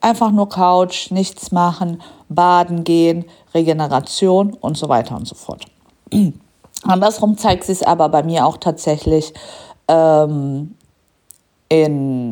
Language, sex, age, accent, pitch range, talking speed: German, female, 50-69, German, 150-185 Hz, 120 wpm